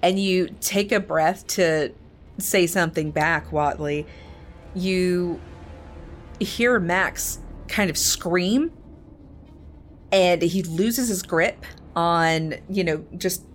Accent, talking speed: American, 110 wpm